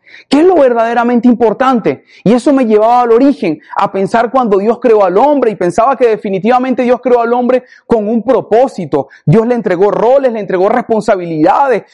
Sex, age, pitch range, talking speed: male, 30-49, 195-245 Hz, 180 wpm